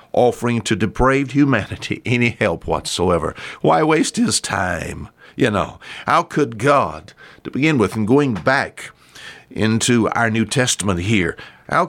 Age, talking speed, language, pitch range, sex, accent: 60-79, 140 wpm, English, 100-150 Hz, male, American